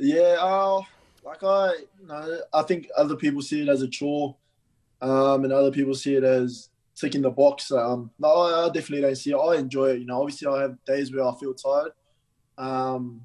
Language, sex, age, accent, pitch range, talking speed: English, male, 20-39, Australian, 130-145 Hz, 210 wpm